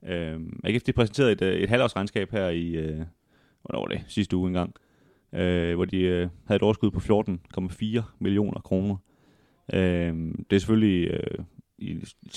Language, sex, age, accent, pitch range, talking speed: Danish, male, 30-49, native, 90-105 Hz, 145 wpm